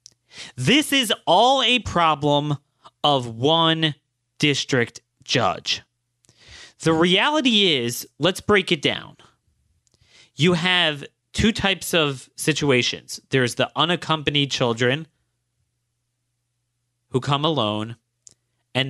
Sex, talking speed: male, 95 wpm